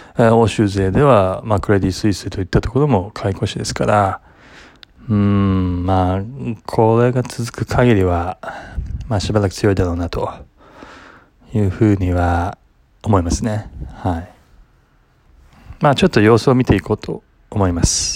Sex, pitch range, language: male, 95-125 Hz, Japanese